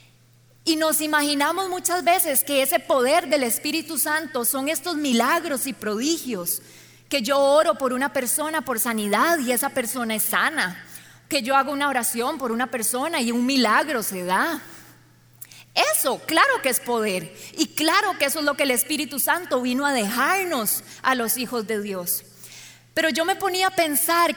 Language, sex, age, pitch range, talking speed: Spanish, female, 20-39, 240-320 Hz, 175 wpm